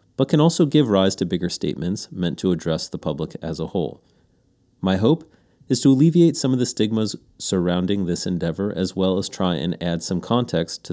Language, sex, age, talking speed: English, male, 30-49, 205 wpm